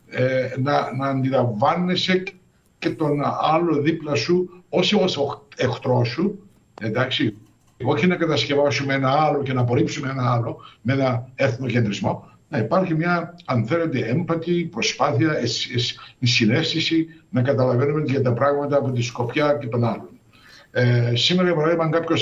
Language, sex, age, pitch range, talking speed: Greek, male, 60-79, 125-175 Hz, 145 wpm